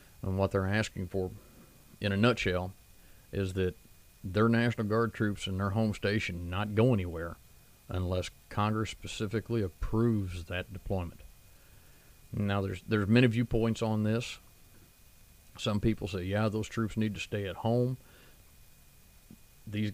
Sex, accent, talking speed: male, American, 140 wpm